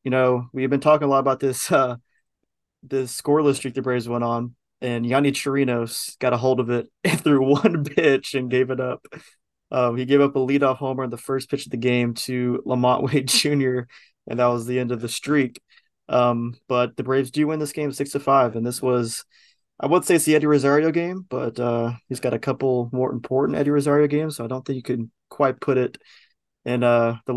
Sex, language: male, English